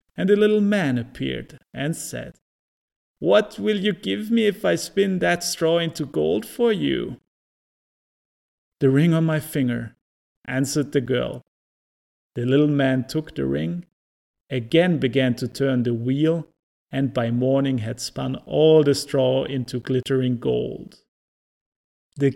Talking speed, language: 140 wpm, English